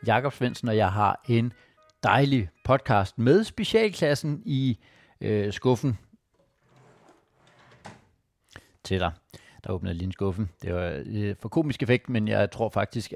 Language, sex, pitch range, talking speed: Danish, male, 100-125 Hz, 135 wpm